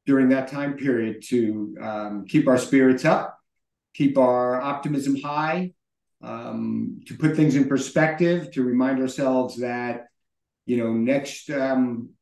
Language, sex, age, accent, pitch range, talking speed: English, male, 50-69, American, 125-155 Hz, 135 wpm